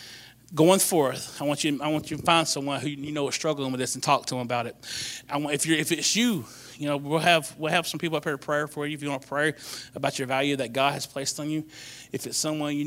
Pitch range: 125-150 Hz